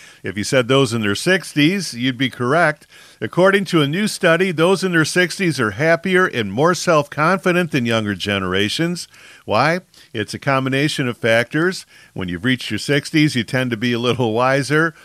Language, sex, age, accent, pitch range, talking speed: English, male, 50-69, American, 120-160 Hz, 180 wpm